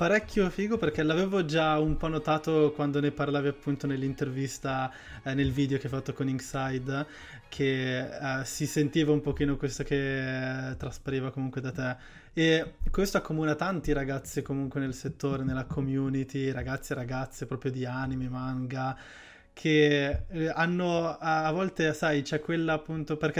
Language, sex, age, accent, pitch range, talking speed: Italian, male, 20-39, native, 130-145 Hz, 155 wpm